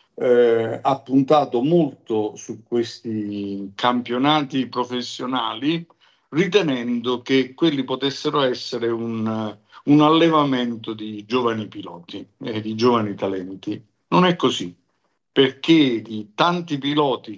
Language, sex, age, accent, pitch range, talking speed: Italian, male, 50-69, native, 110-135 Hz, 105 wpm